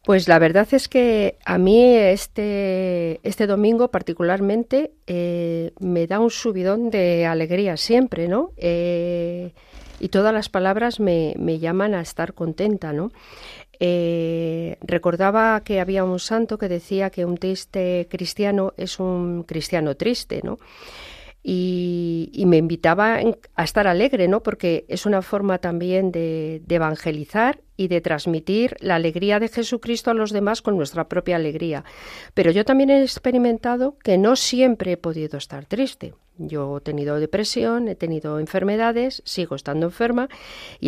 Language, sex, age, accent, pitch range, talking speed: Spanish, female, 40-59, Spanish, 170-215 Hz, 150 wpm